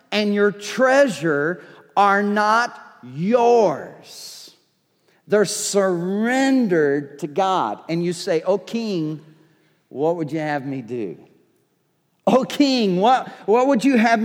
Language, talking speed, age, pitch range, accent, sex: English, 120 wpm, 50-69, 165-255 Hz, American, male